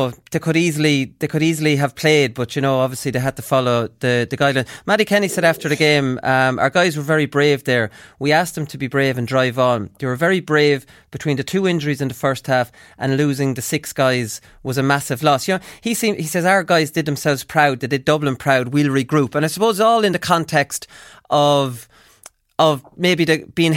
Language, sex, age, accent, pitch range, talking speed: English, male, 30-49, Irish, 135-170 Hz, 220 wpm